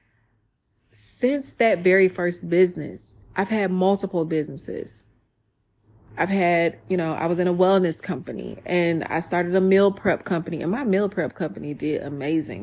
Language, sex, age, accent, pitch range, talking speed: English, female, 20-39, American, 155-185 Hz, 155 wpm